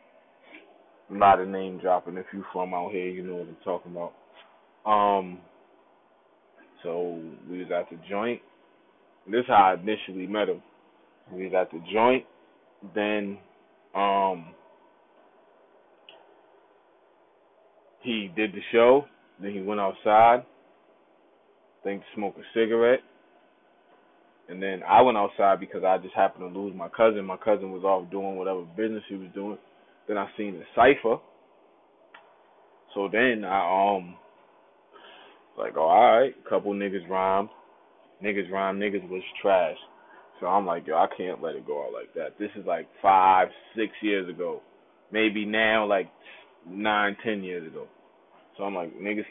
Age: 20-39